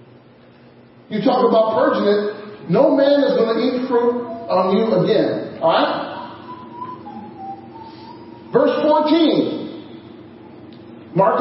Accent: American